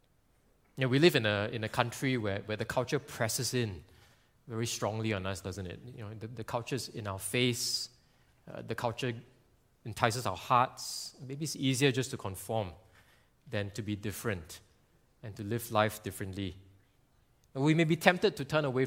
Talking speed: 185 wpm